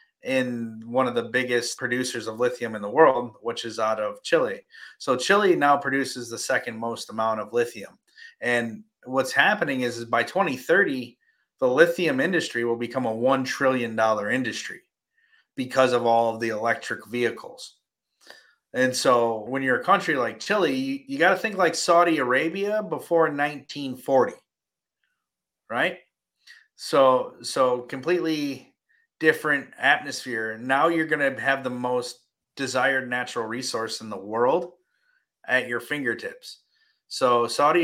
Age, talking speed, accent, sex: 30-49, 145 wpm, American, male